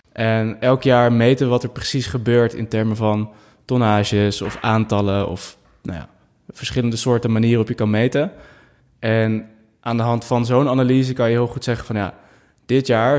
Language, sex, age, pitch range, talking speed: Dutch, male, 20-39, 110-120 Hz, 185 wpm